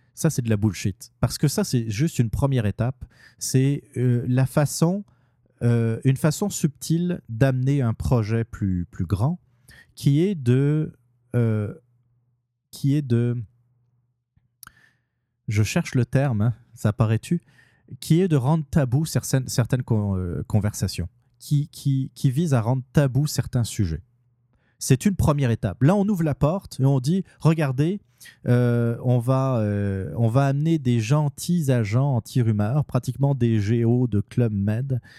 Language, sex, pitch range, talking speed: French, male, 115-140 Hz, 155 wpm